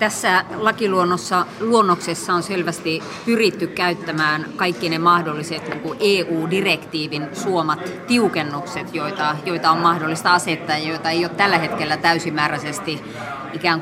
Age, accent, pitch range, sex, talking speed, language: 30-49, native, 150-180 Hz, female, 115 wpm, Finnish